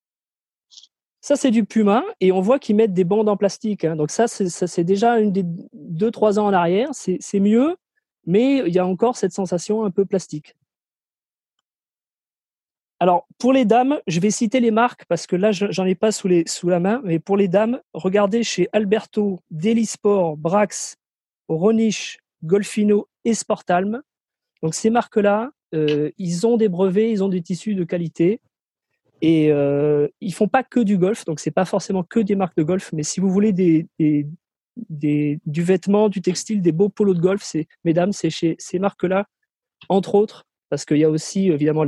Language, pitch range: French, 165-215 Hz